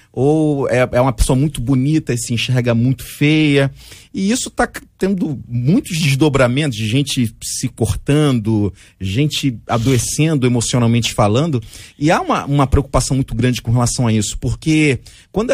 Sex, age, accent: male, 40-59, Brazilian